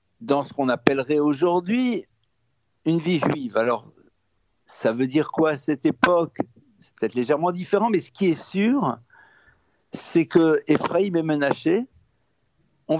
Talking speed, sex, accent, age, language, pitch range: 145 wpm, male, French, 60-79, French, 135-190 Hz